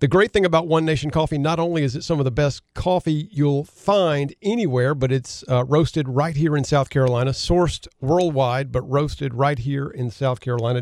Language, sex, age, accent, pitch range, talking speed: English, male, 50-69, American, 130-150 Hz, 205 wpm